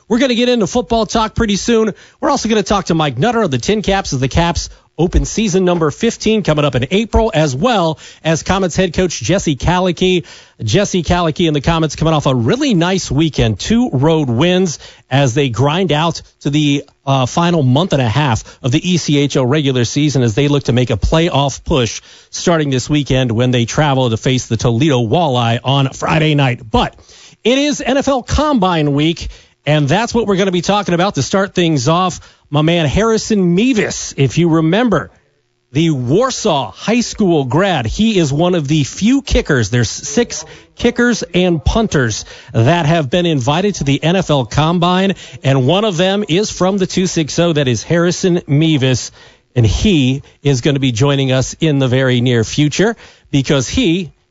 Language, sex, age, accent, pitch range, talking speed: English, male, 40-59, American, 135-190 Hz, 190 wpm